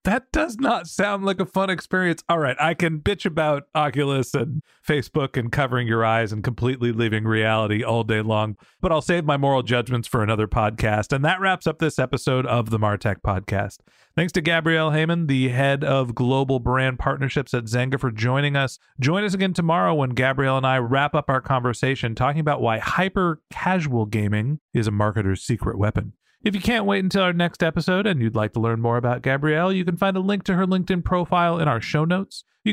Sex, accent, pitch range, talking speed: male, American, 120-165 Hz, 210 wpm